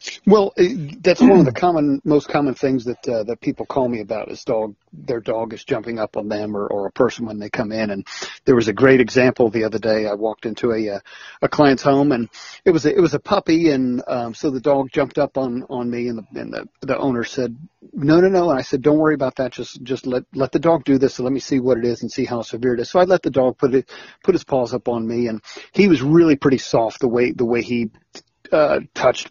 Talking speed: 270 wpm